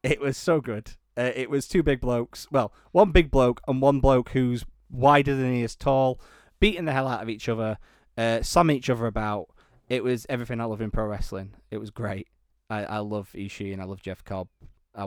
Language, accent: English, British